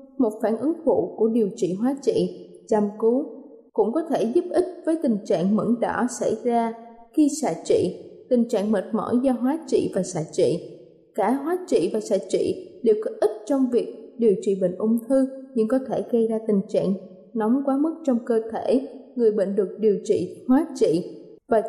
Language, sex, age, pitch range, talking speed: Vietnamese, female, 20-39, 215-275 Hz, 200 wpm